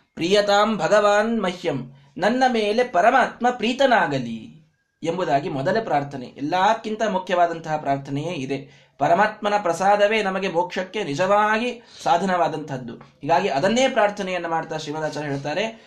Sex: male